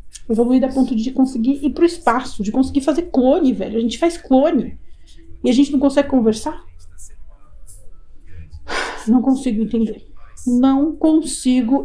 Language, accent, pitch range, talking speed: Portuguese, Brazilian, 225-285 Hz, 140 wpm